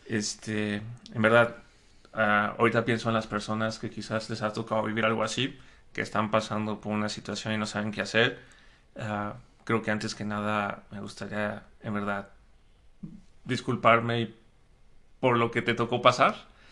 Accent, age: Mexican, 30-49